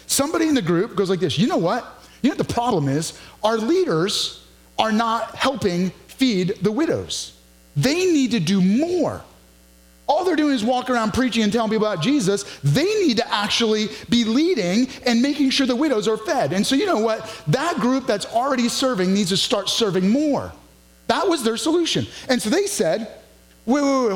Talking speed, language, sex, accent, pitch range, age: 200 wpm, English, male, American, 200-275 Hz, 30-49